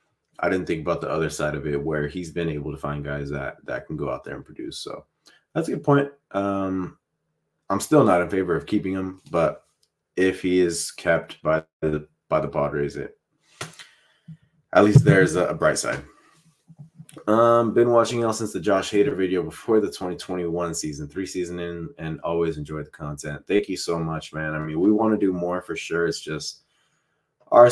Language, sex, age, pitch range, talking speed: English, male, 20-39, 75-90 Hz, 200 wpm